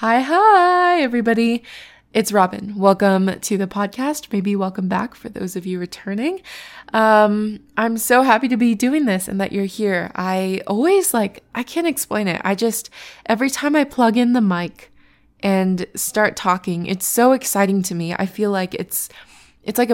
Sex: female